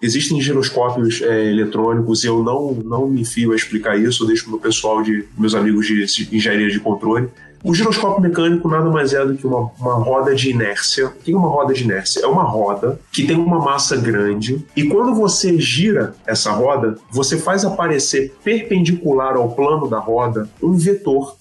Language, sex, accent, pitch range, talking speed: Portuguese, male, Brazilian, 120-165 Hz, 190 wpm